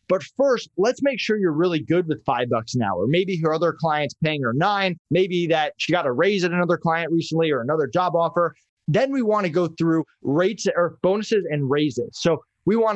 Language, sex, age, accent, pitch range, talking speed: English, male, 20-39, American, 150-185 Hz, 220 wpm